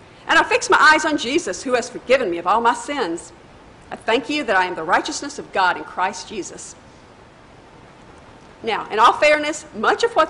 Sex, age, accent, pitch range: female, 50-69, American, 195-310 Hz